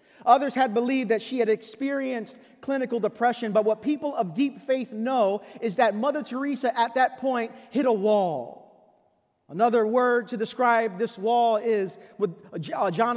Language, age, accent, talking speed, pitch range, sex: English, 40-59, American, 160 wpm, 215-260 Hz, male